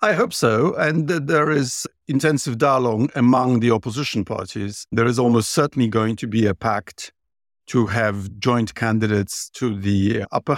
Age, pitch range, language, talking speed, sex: 50-69, 115-145 Hz, English, 160 wpm, male